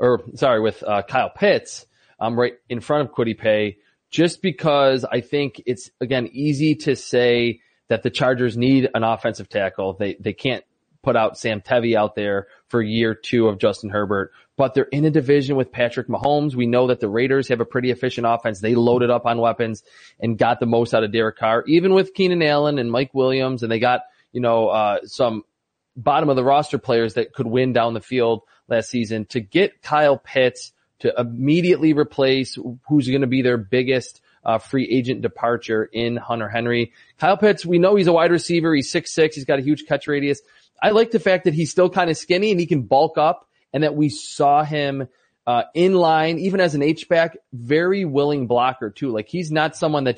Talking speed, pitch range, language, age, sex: 210 wpm, 120-150 Hz, English, 30-49, male